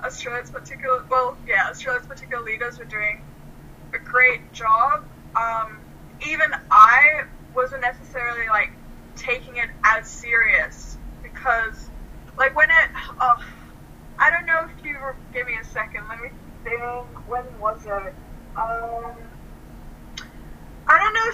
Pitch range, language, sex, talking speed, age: 225-290 Hz, English, female, 125 wpm, 10-29